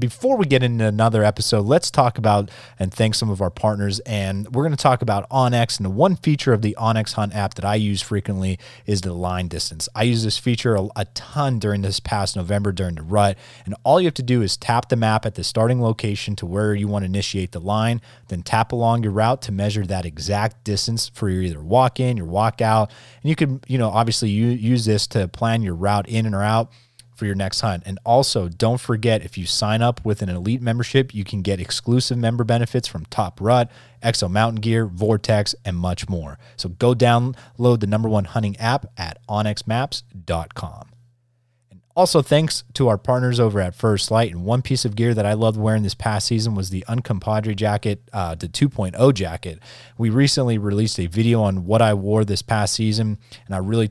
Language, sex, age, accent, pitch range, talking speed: English, male, 30-49, American, 100-120 Hz, 215 wpm